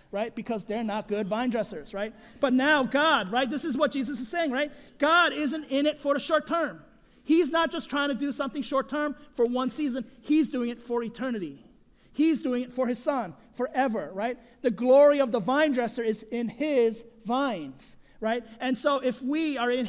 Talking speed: 210 wpm